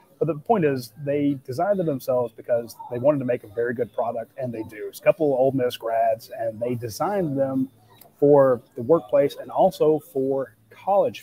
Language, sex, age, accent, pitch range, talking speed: English, male, 30-49, American, 125-150 Hz, 205 wpm